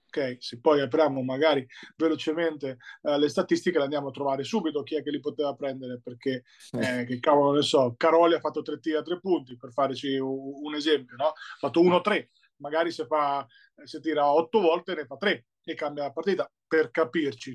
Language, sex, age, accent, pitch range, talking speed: Italian, male, 30-49, native, 135-165 Hz, 200 wpm